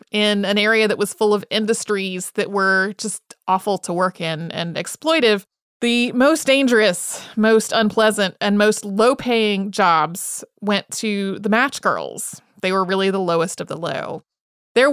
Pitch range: 190-230 Hz